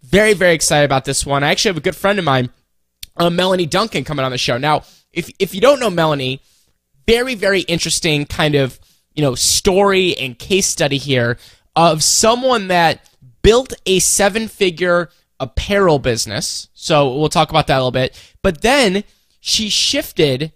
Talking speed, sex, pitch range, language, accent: 180 wpm, male, 145-195 Hz, English, American